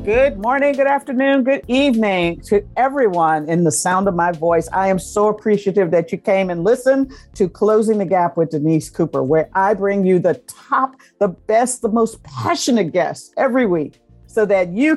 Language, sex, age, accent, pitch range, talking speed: English, female, 50-69, American, 165-220 Hz, 190 wpm